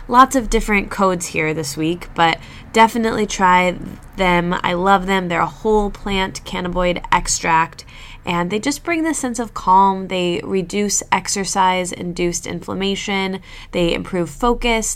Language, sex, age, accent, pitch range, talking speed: English, female, 20-39, American, 170-225 Hz, 145 wpm